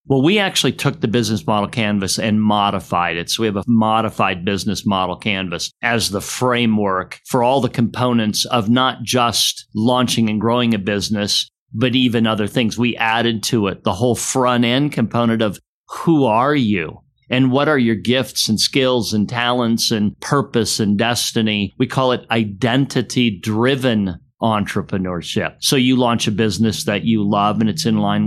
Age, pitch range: 50-69, 105-130 Hz